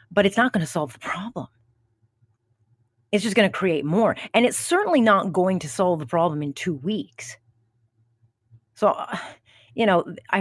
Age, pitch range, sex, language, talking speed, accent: 30-49, 140-230 Hz, female, English, 180 wpm, American